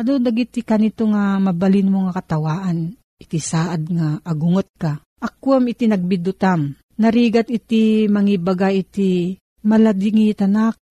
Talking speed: 120 wpm